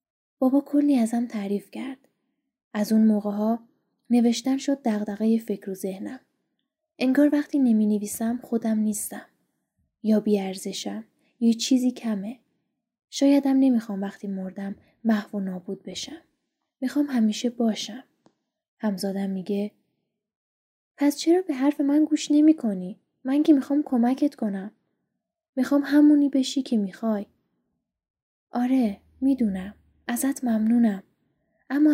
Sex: female